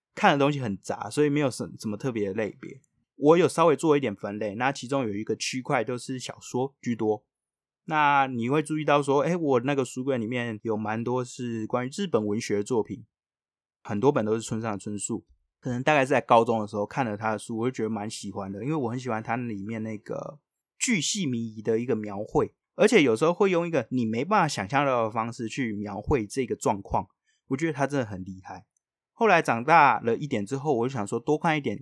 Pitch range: 110-135 Hz